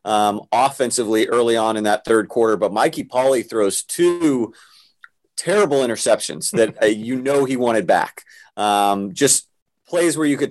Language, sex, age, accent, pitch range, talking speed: English, male, 30-49, American, 105-120 Hz, 160 wpm